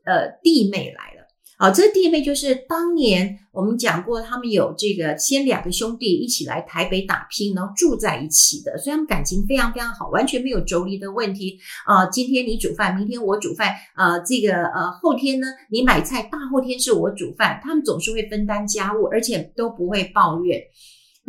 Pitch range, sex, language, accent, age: 190-265 Hz, female, Chinese, native, 50-69